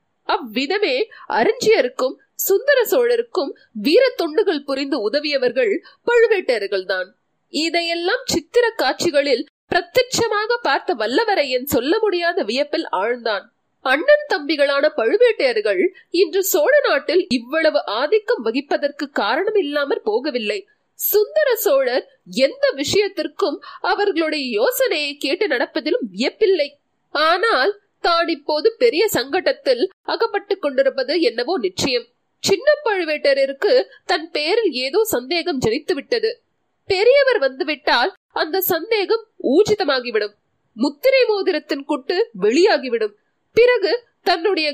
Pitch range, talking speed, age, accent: 295-450 Hz, 70 wpm, 30-49, native